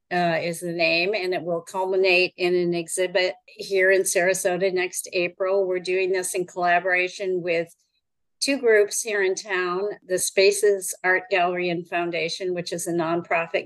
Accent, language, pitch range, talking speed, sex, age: American, English, 170-195 Hz, 165 wpm, female, 50-69